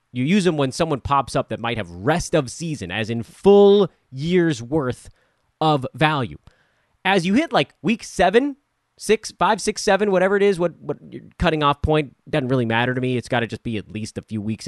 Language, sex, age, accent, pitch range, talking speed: English, male, 30-49, American, 125-175 Hz, 215 wpm